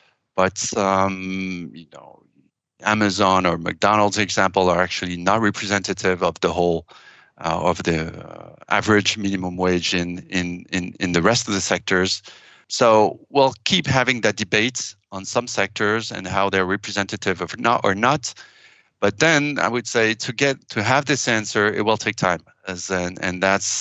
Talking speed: 170 wpm